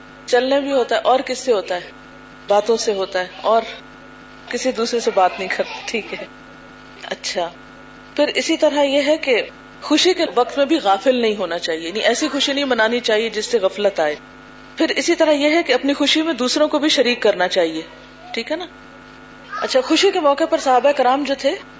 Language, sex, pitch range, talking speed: Urdu, female, 215-275 Hz, 205 wpm